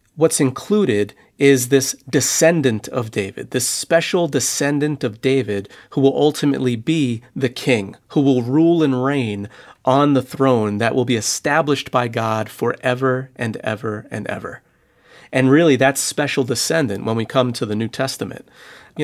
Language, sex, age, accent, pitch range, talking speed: English, male, 40-59, American, 115-140 Hz, 160 wpm